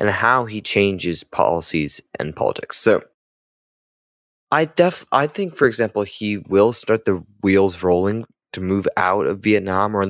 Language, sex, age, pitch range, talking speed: English, male, 20-39, 100-120 Hz, 160 wpm